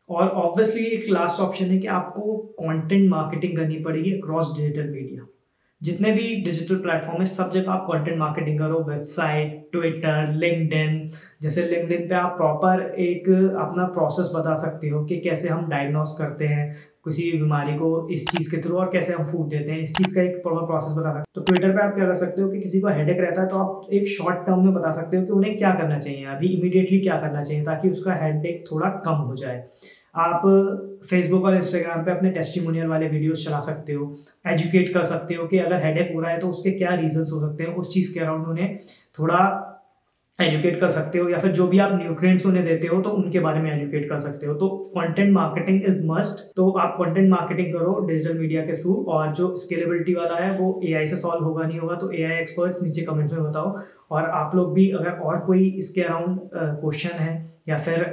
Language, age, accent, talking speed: Hindi, 20-39, native, 220 wpm